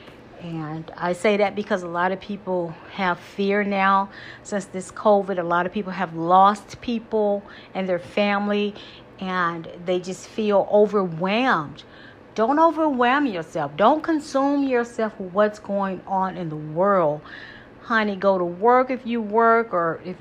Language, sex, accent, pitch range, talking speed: English, female, American, 185-240 Hz, 155 wpm